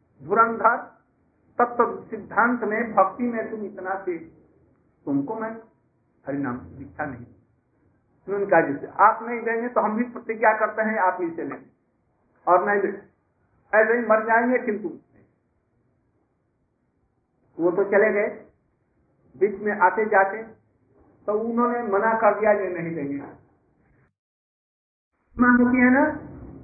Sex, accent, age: male, native, 50-69